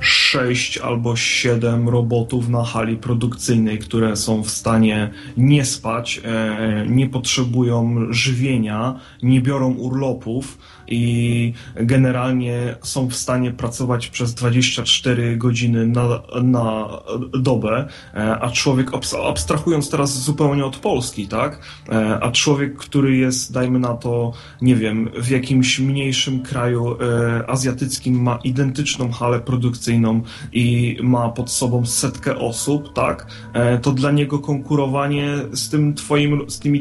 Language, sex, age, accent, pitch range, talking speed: English, male, 30-49, Polish, 120-150 Hz, 115 wpm